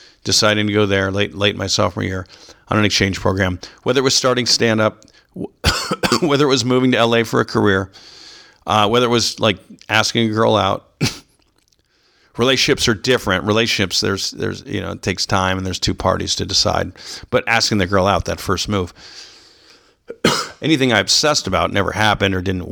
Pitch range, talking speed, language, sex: 95-115 Hz, 185 wpm, English, male